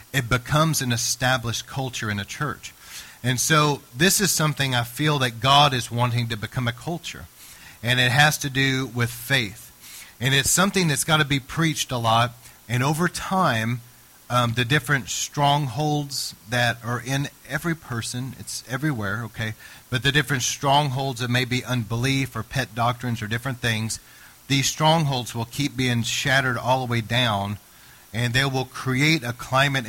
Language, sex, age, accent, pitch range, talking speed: English, male, 40-59, American, 120-145 Hz, 170 wpm